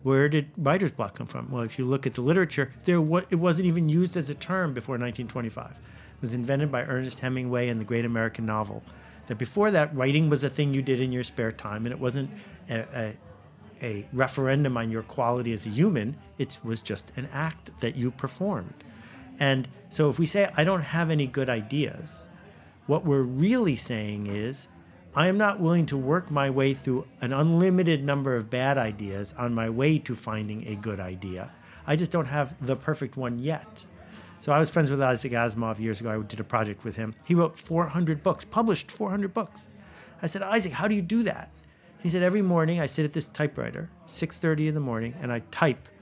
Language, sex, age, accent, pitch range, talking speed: English, male, 50-69, American, 115-165 Hz, 210 wpm